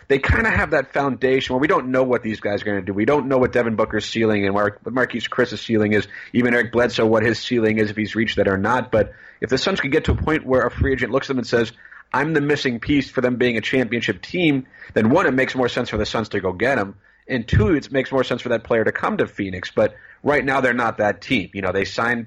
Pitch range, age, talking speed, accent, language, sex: 105-125 Hz, 30-49, 290 wpm, American, English, male